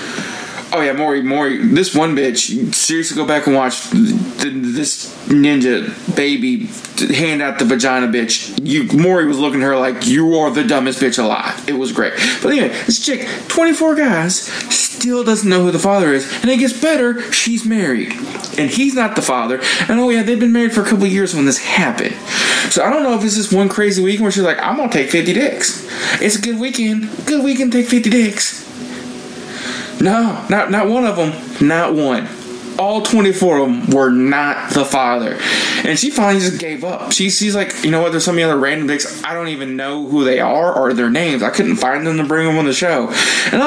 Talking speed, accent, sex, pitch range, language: 215 wpm, American, male, 145-235 Hz, English